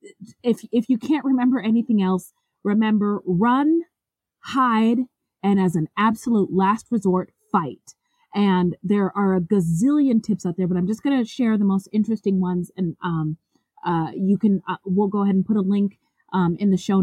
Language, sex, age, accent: English, female, 20-39, American